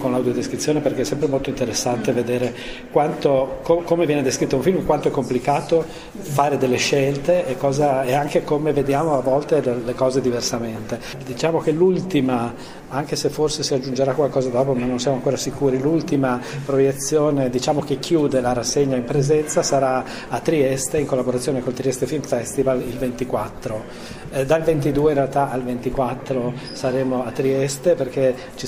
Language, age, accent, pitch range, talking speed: Italian, 40-59, native, 125-140 Hz, 160 wpm